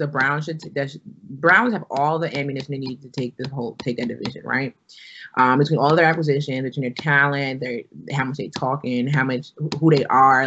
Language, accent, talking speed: English, American, 225 wpm